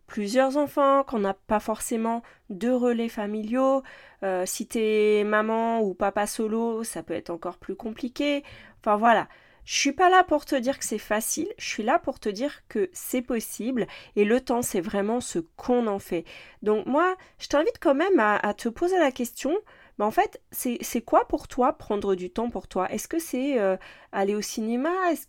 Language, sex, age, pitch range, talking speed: French, female, 30-49, 210-275 Hz, 200 wpm